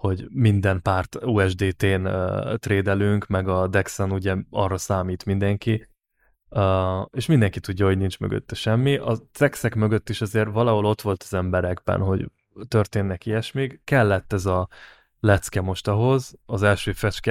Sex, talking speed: male, 150 wpm